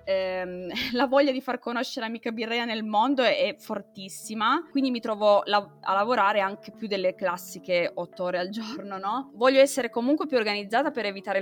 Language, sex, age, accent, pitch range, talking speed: Italian, female, 20-39, native, 190-225 Hz, 175 wpm